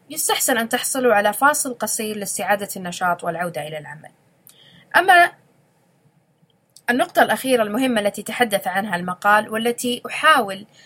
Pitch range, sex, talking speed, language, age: 185-245 Hz, female, 115 wpm, Arabic, 20-39